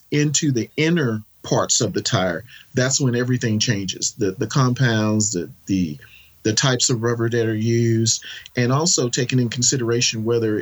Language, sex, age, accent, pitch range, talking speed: English, male, 40-59, American, 110-130 Hz, 165 wpm